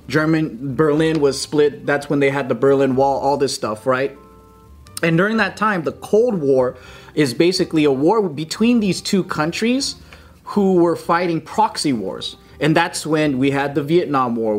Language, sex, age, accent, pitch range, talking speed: English, male, 30-49, American, 130-165 Hz, 175 wpm